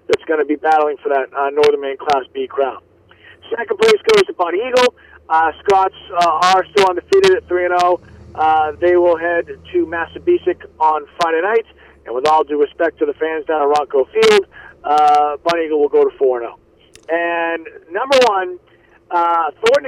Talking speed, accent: 180 wpm, American